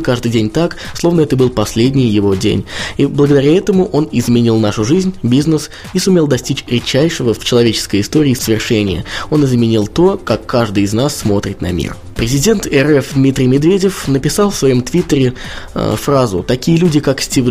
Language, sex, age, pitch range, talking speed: Russian, male, 20-39, 110-150 Hz, 170 wpm